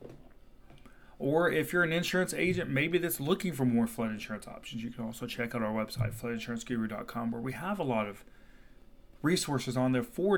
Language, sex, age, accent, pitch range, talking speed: English, male, 30-49, American, 120-165 Hz, 185 wpm